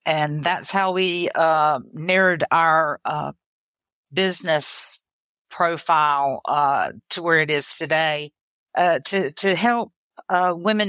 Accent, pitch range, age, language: American, 160-185 Hz, 50-69, English